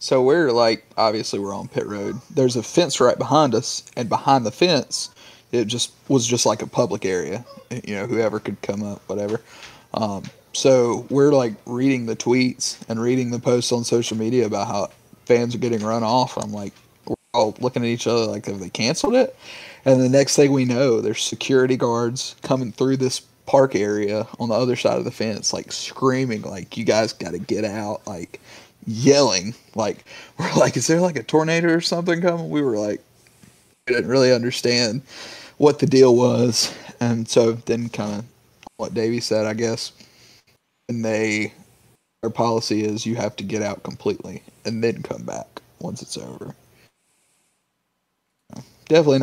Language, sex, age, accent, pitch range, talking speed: English, male, 30-49, American, 110-135 Hz, 185 wpm